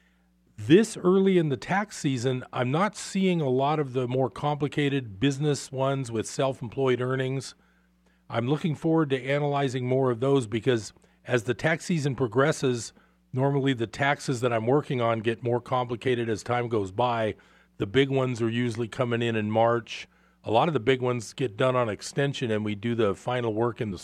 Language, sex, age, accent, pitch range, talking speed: English, male, 40-59, American, 110-140 Hz, 185 wpm